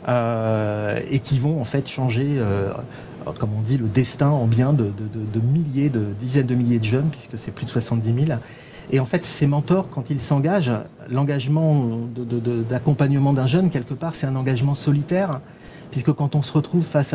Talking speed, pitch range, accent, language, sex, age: 205 wpm, 125-150 Hz, French, French, male, 40-59